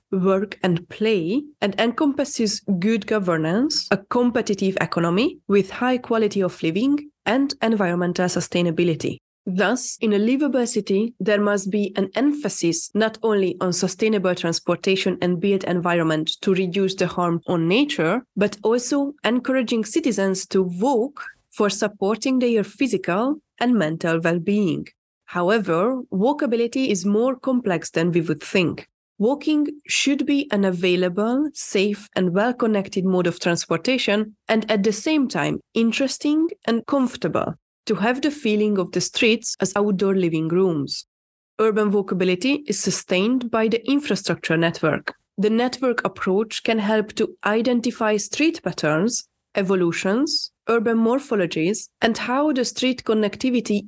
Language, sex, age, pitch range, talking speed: English, female, 20-39, 185-245 Hz, 135 wpm